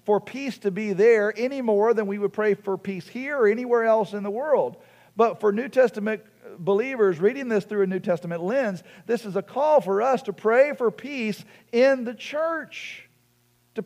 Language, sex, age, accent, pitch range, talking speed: English, male, 50-69, American, 145-220 Hz, 200 wpm